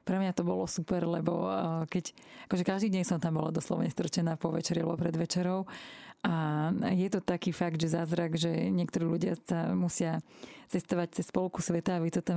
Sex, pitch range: female, 170-190 Hz